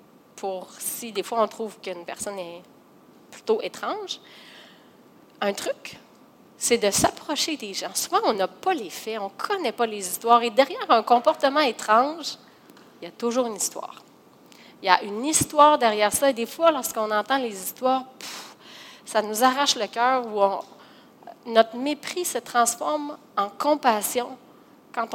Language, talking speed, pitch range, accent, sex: French, 165 wpm, 205-270 Hz, Canadian, female